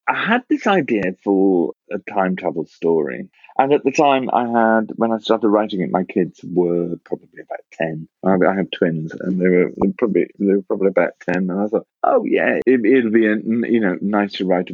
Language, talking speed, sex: English, 220 wpm, male